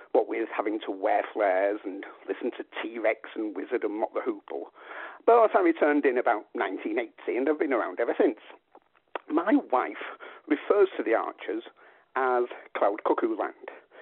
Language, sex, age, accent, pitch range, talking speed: English, male, 50-69, British, 330-460 Hz, 165 wpm